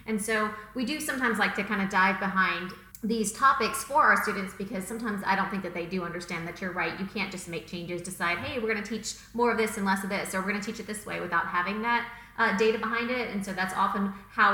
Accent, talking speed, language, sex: American, 275 wpm, English, female